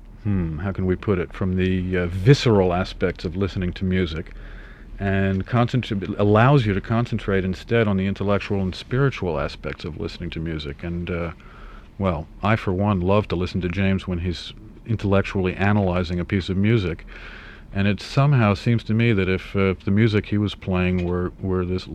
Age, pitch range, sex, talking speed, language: 50-69, 90-105 Hz, male, 190 wpm, English